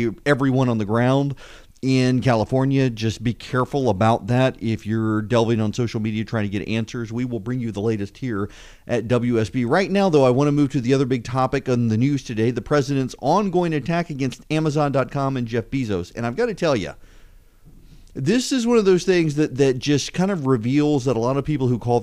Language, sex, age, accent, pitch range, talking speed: English, male, 40-59, American, 115-150 Hz, 220 wpm